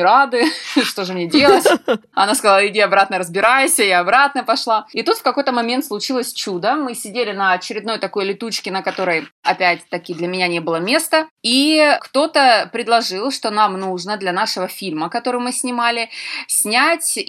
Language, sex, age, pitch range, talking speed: Russian, female, 20-39, 185-255 Hz, 165 wpm